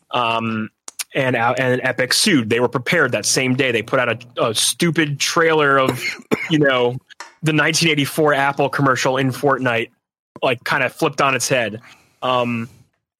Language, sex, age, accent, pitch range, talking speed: English, male, 20-39, American, 125-155 Hz, 160 wpm